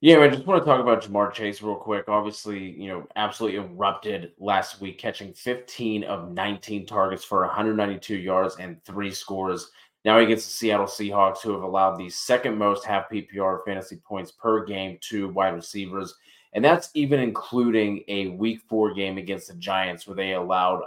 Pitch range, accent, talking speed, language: 95-110 Hz, American, 185 wpm, English